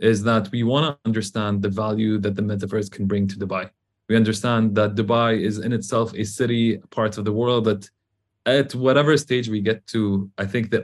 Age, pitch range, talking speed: 20-39, 105-120 Hz, 210 wpm